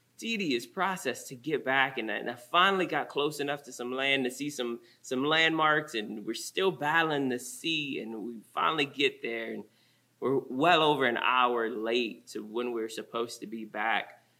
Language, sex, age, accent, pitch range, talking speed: English, male, 20-39, American, 125-170 Hz, 185 wpm